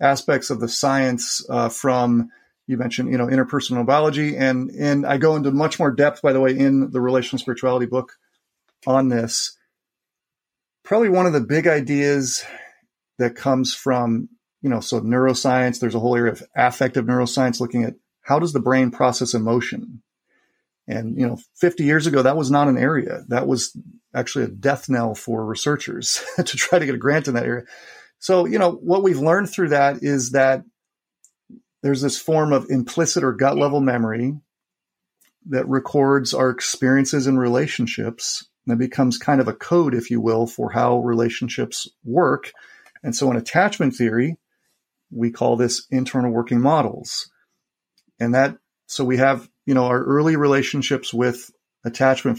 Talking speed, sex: 170 wpm, male